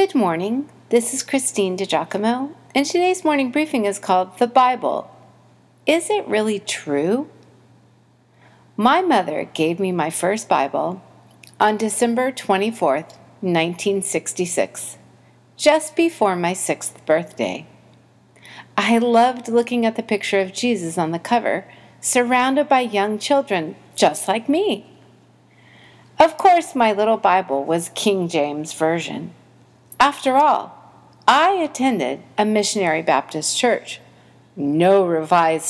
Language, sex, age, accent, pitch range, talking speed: English, female, 40-59, American, 170-265 Hz, 120 wpm